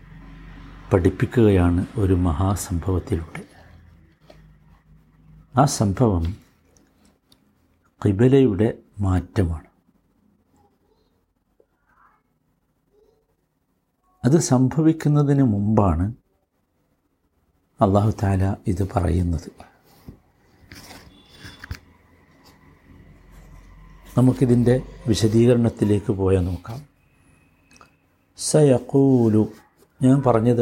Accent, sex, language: native, male, Malayalam